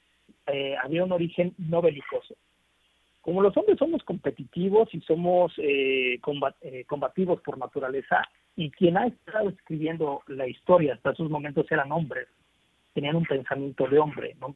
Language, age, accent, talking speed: Spanish, 40-59, Mexican, 155 wpm